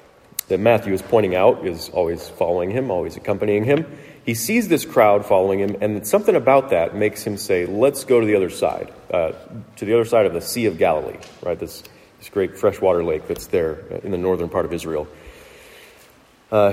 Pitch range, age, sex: 100-135 Hz, 40-59, male